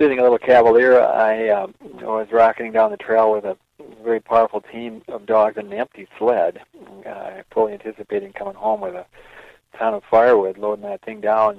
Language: English